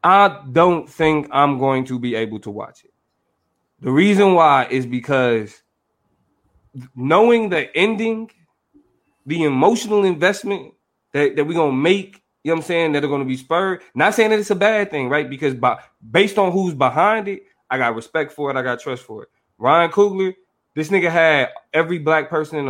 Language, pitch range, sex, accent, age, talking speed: English, 140-195 Hz, male, American, 20-39, 195 wpm